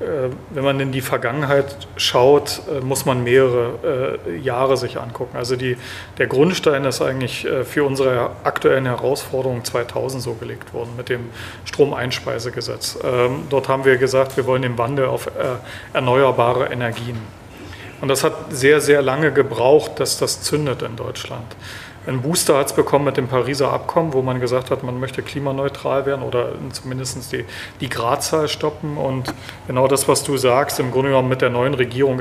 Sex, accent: male, German